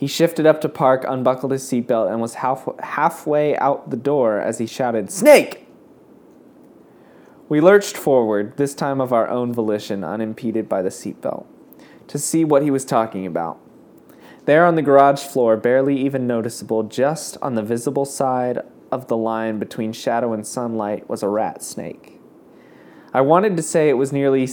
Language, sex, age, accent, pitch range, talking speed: English, male, 20-39, American, 115-150 Hz, 170 wpm